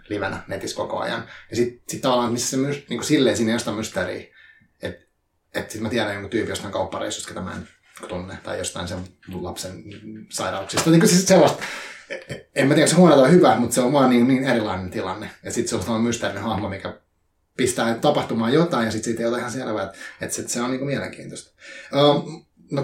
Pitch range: 105-130 Hz